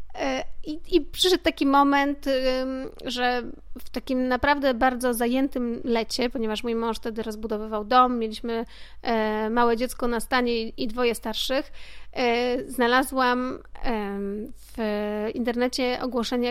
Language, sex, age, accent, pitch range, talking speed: Polish, female, 30-49, native, 230-265 Hz, 110 wpm